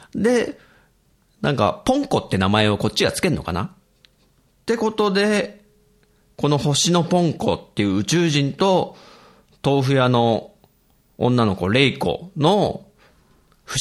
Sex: male